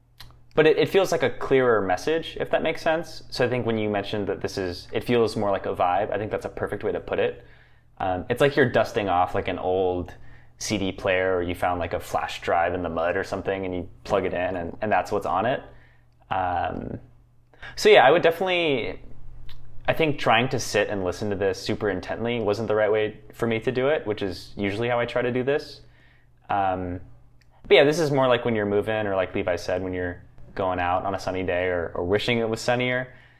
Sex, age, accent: male, 20-39, American